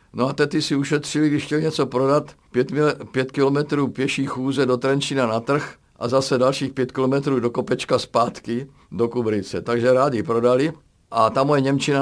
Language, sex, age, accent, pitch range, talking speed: Czech, male, 50-69, native, 110-135 Hz, 180 wpm